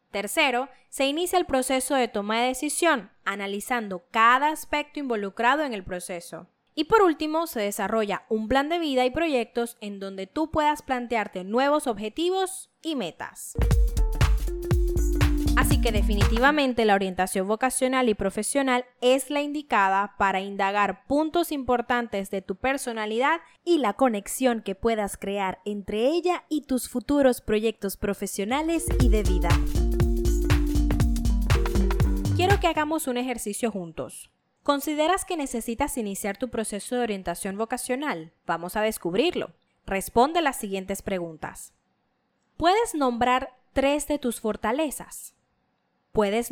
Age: 10-29